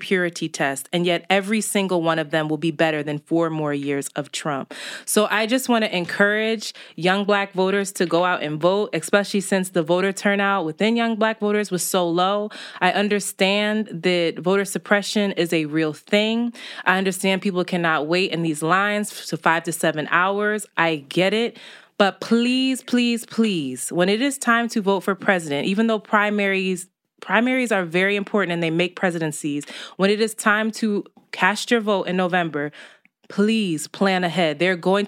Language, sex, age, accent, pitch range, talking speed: English, female, 20-39, American, 170-205 Hz, 185 wpm